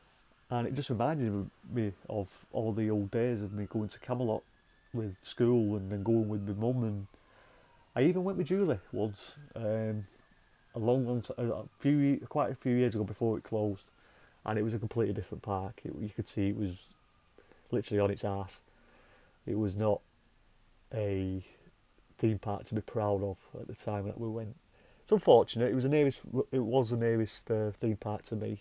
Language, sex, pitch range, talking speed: English, male, 100-120 Hz, 190 wpm